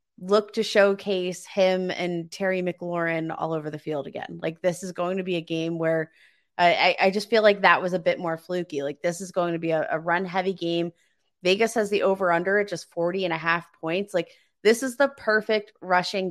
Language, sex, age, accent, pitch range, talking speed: English, female, 20-39, American, 165-200 Hz, 225 wpm